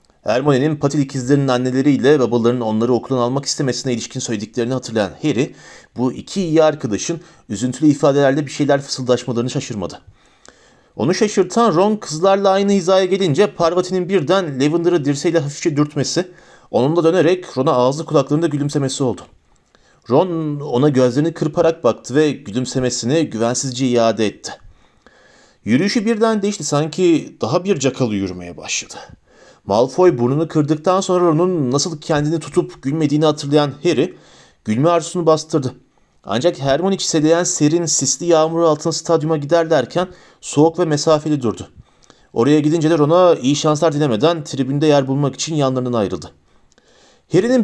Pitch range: 125-165 Hz